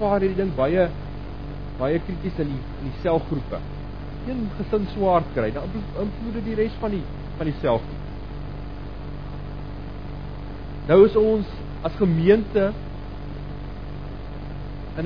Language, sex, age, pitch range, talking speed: English, male, 40-59, 140-210 Hz, 110 wpm